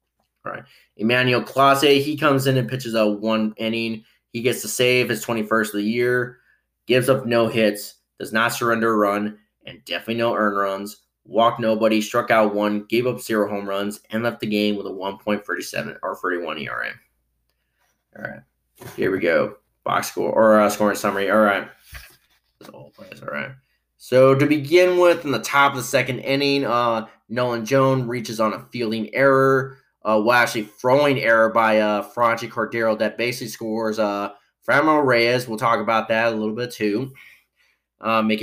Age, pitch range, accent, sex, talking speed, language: 20-39, 105-125 Hz, American, male, 175 wpm, English